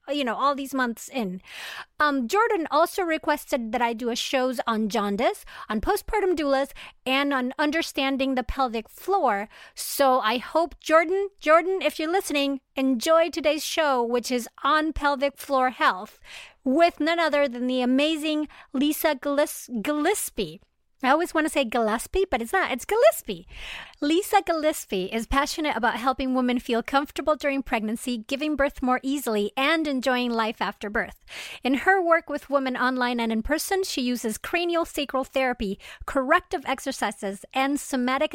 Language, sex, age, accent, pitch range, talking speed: English, female, 40-59, American, 250-315 Hz, 155 wpm